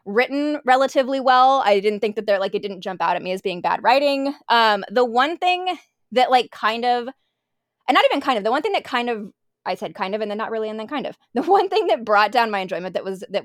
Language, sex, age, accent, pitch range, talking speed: English, female, 20-39, American, 205-260 Hz, 270 wpm